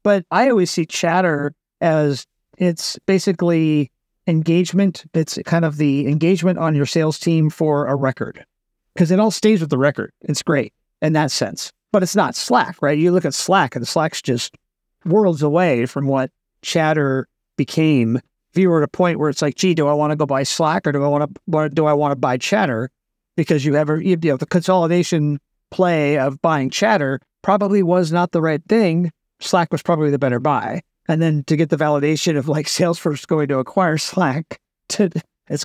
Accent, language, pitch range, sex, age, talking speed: American, English, 145-175 Hz, male, 50-69, 195 wpm